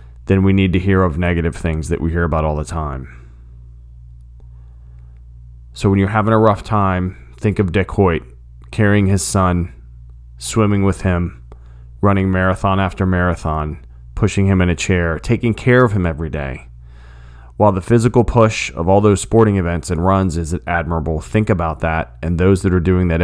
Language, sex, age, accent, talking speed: English, male, 30-49, American, 180 wpm